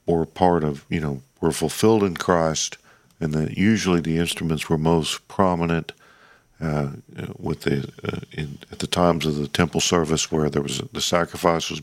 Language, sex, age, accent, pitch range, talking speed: English, male, 50-69, American, 80-90 Hz, 185 wpm